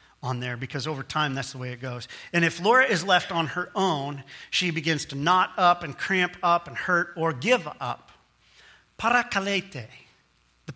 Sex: male